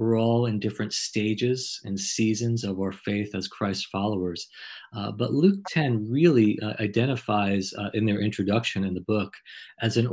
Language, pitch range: English, 100-125 Hz